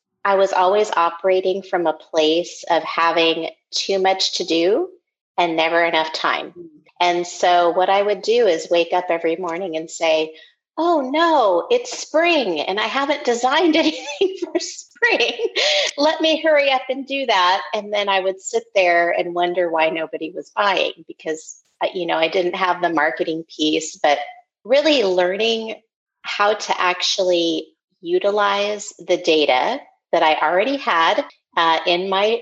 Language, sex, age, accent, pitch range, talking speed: English, female, 30-49, American, 170-230 Hz, 155 wpm